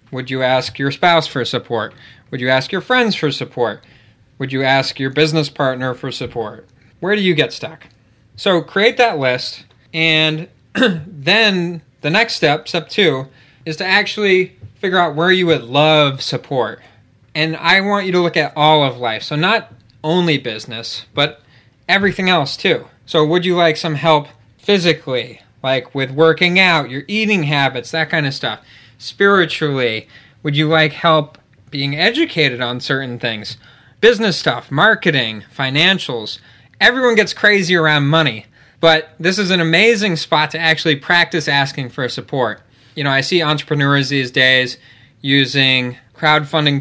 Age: 20-39